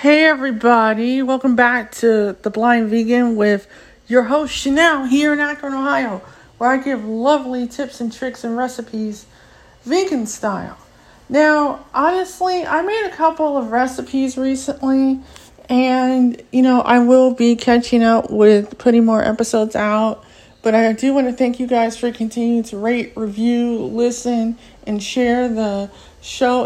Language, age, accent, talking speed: English, 40-59, American, 150 wpm